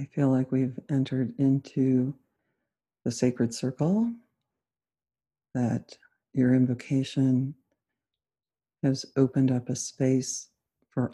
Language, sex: English, female